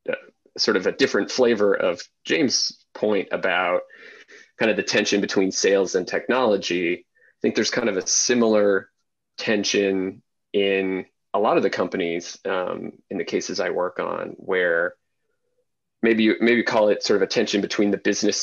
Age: 30-49